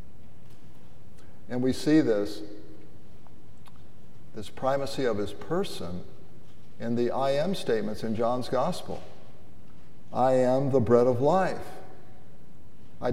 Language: English